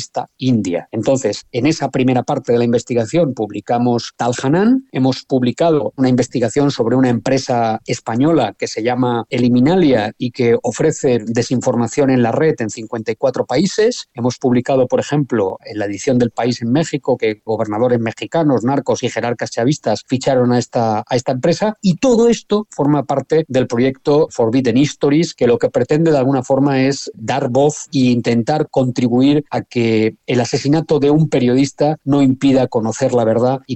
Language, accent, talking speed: Spanish, Spanish, 165 wpm